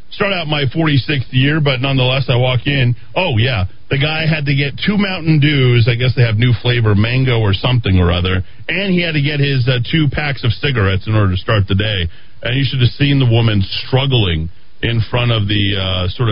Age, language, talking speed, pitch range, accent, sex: 40-59, English, 230 wpm, 95-135 Hz, American, male